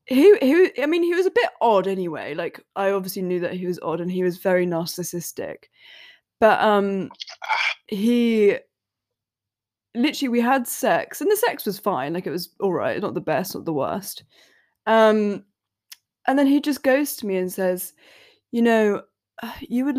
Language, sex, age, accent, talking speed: English, female, 20-39, British, 175 wpm